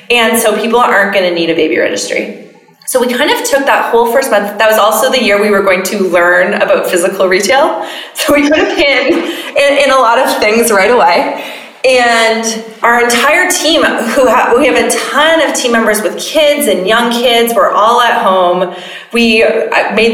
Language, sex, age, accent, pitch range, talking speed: English, female, 20-39, American, 185-245 Hz, 205 wpm